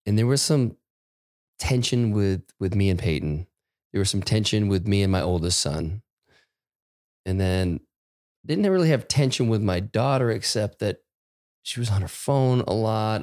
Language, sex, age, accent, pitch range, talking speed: English, male, 20-39, American, 90-120 Hz, 170 wpm